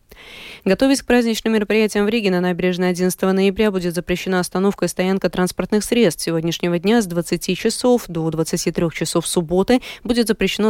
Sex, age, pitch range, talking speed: female, 20-39, 170-205 Hz, 165 wpm